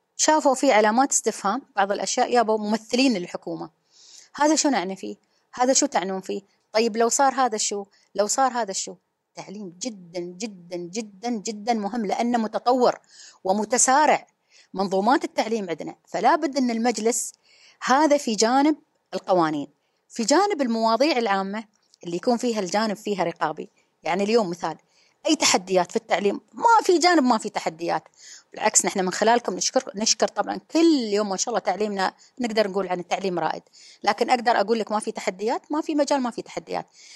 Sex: female